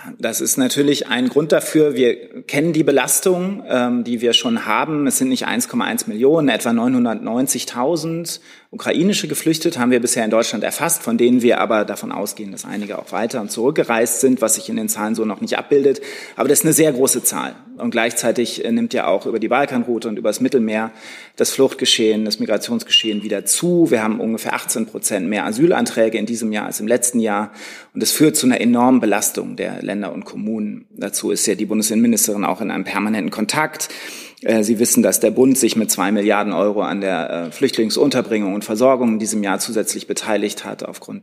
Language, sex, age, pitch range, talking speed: German, male, 30-49, 110-155 Hz, 195 wpm